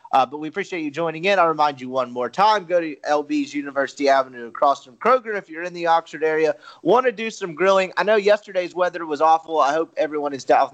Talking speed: 240 wpm